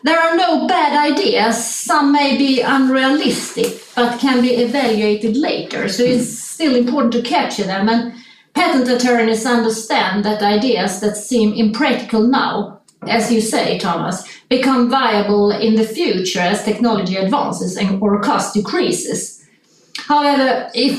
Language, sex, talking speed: English, female, 135 wpm